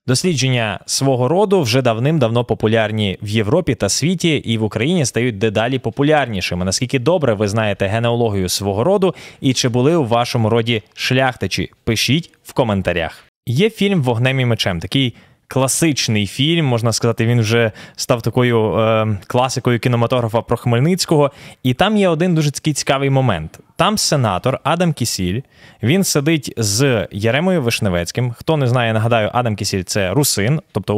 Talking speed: 150 wpm